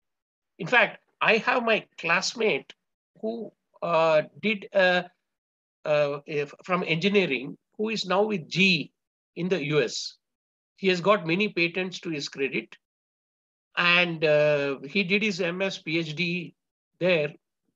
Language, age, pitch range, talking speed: English, 60-79, 155-215 Hz, 125 wpm